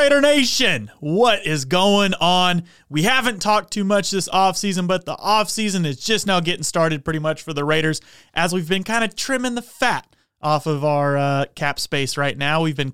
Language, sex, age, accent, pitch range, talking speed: English, male, 30-49, American, 140-175 Hz, 205 wpm